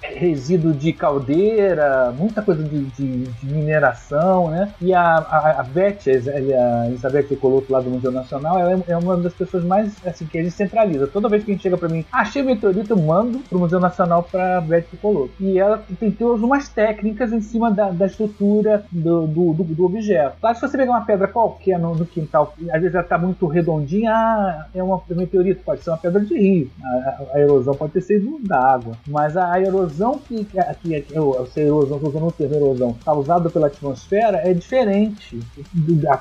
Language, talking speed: Portuguese, 205 wpm